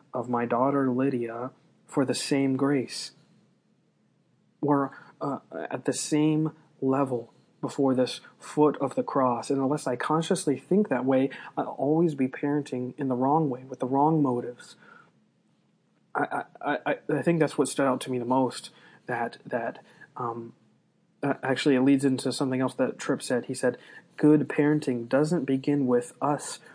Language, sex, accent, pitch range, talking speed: English, male, American, 125-140 Hz, 160 wpm